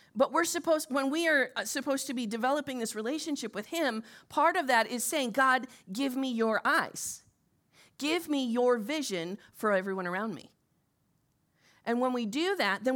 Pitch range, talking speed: 200-290 Hz, 175 wpm